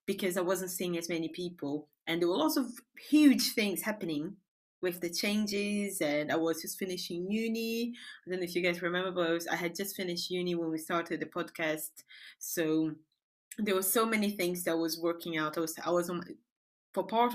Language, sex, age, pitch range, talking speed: English, female, 20-39, 170-220 Hz, 205 wpm